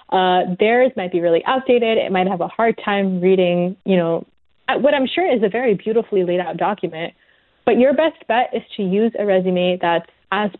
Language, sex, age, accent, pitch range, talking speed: English, female, 20-39, American, 185-225 Hz, 205 wpm